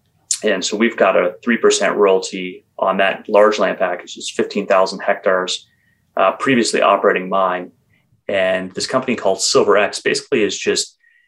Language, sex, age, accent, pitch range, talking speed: English, male, 30-49, American, 95-120 Hz, 150 wpm